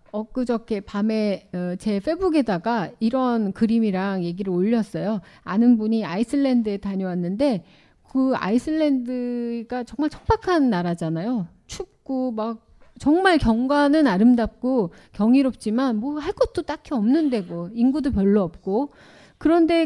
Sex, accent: female, native